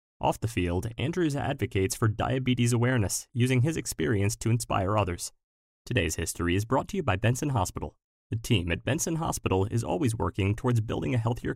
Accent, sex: American, male